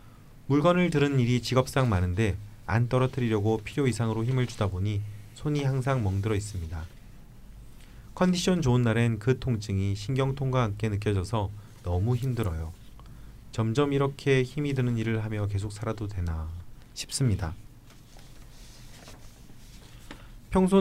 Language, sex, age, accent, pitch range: Korean, male, 30-49, native, 105-130 Hz